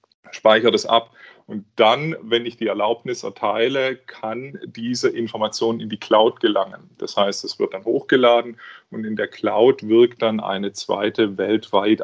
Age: 30-49